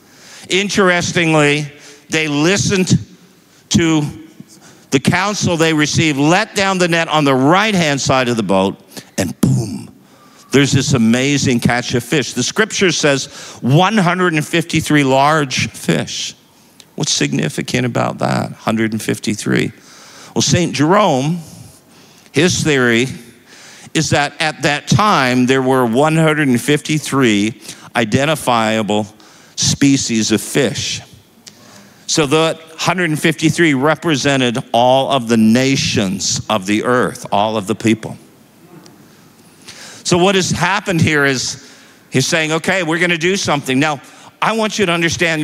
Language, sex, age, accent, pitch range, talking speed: English, male, 50-69, American, 130-165 Hz, 120 wpm